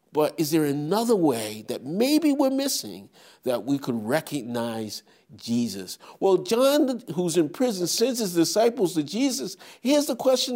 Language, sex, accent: English, male, American